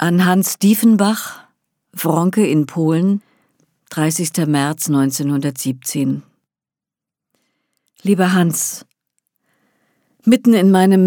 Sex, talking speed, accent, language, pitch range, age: female, 75 wpm, German, German, 155-200 Hz, 50-69